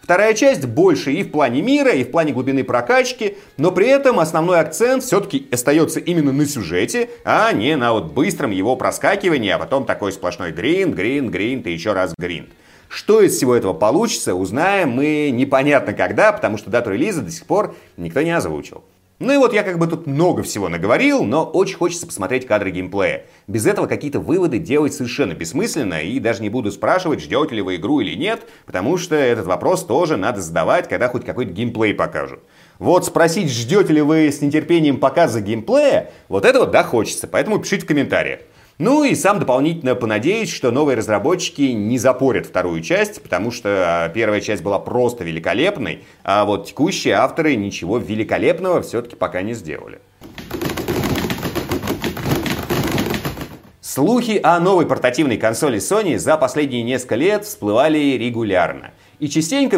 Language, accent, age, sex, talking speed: Russian, native, 30-49, male, 165 wpm